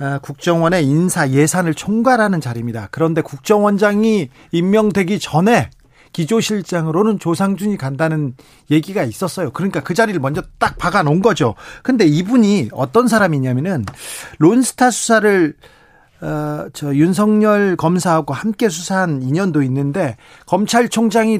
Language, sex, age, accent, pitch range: Korean, male, 40-59, native, 145-215 Hz